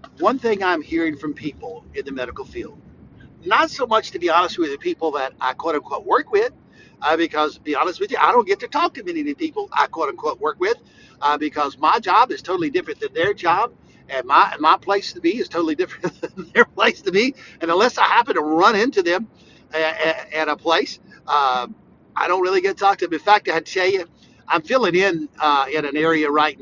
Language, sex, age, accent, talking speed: English, male, 60-79, American, 240 wpm